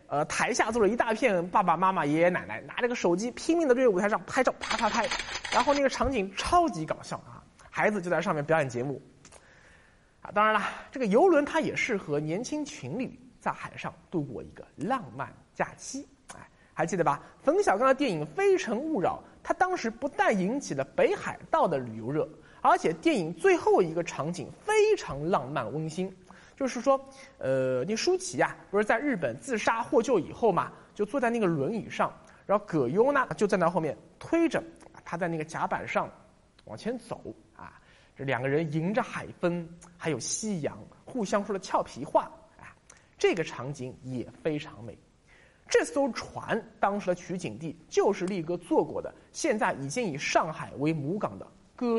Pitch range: 160-265 Hz